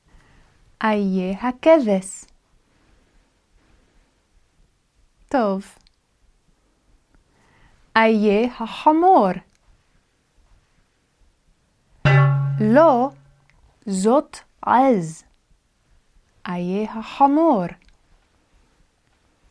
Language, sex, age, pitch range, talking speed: Hebrew, female, 30-49, 180-275 Hz, 30 wpm